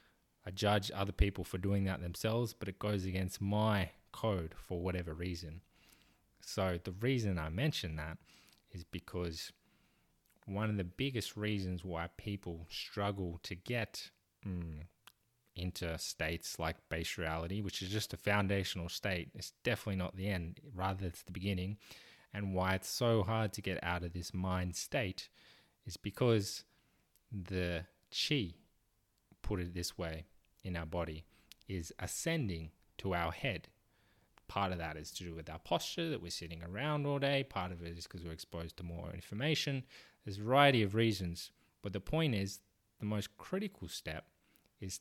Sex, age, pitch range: male, 20-39, 85-105 Hz